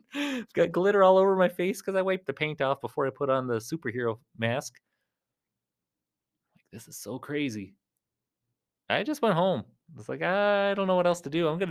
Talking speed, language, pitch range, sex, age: 205 wpm, English, 110-160 Hz, male, 30-49